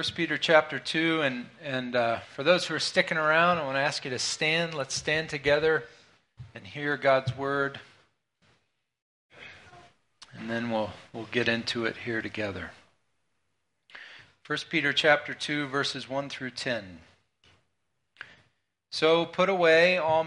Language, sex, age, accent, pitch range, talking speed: English, male, 40-59, American, 125-155 Hz, 140 wpm